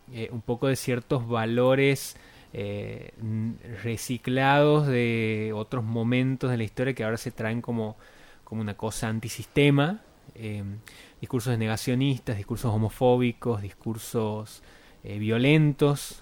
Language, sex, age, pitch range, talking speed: Spanish, male, 20-39, 115-150 Hz, 115 wpm